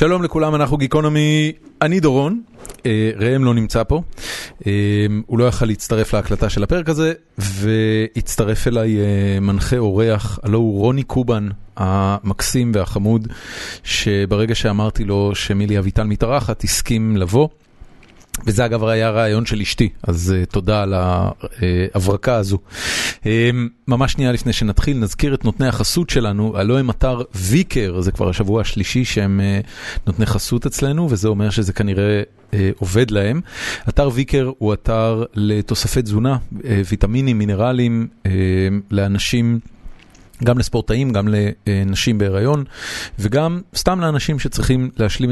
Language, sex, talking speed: Hebrew, male, 120 wpm